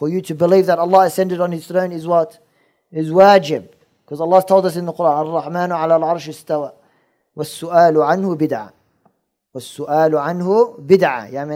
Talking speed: 170 wpm